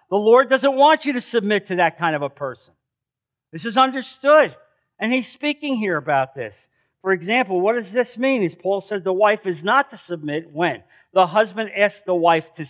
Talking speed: 205 wpm